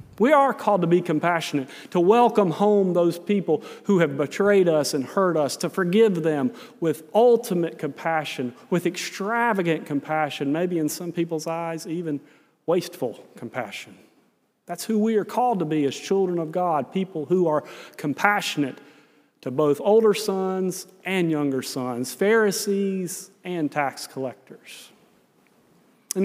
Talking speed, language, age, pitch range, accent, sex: 140 wpm, English, 40-59, 155-200 Hz, American, male